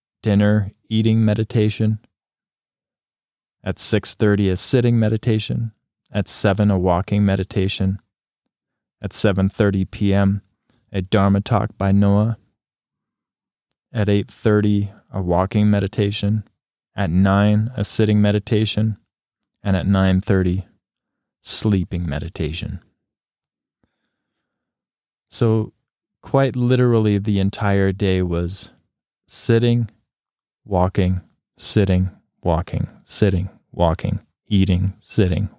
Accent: American